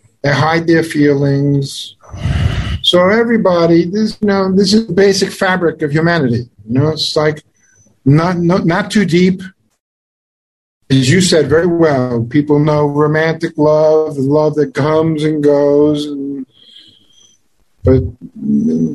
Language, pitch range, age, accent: English, 125-180 Hz, 50-69, American